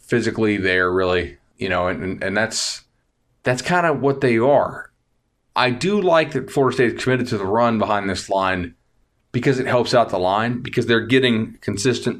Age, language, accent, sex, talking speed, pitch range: 30-49, English, American, male, 185 wpm, 100-120 Hz